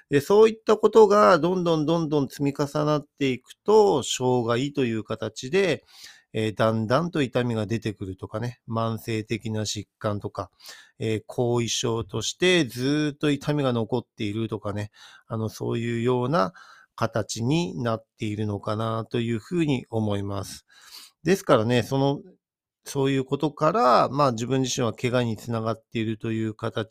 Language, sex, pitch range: Japanese, male, 115-150 Hz